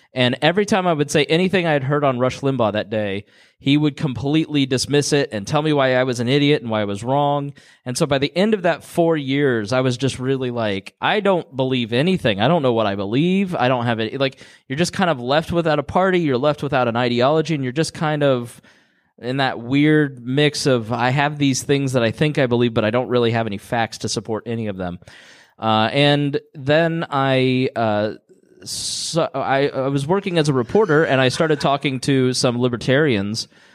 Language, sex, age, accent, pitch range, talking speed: English, male, 20-39, American, 115-145 Hz, 225 wpm